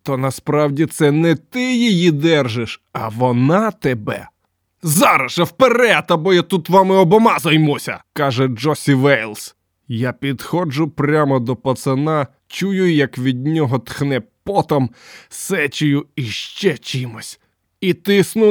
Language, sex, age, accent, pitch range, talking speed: Ukrainian, male, 20-39, native, 130-175 Hz, 130 wpm